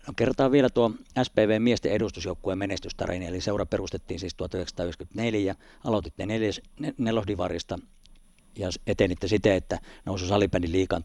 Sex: male